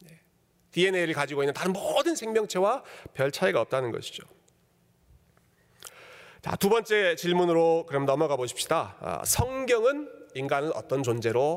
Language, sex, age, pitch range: Korean, male, 40-59, 125-170 Hz